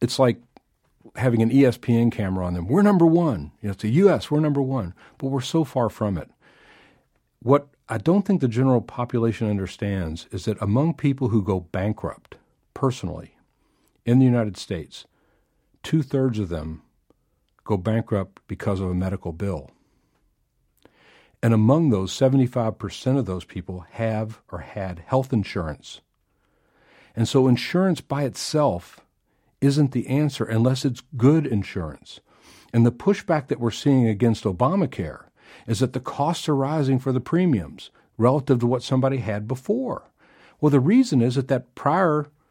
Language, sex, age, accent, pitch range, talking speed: English, male, 50-69, American, 105-145 Hz, 150 wpm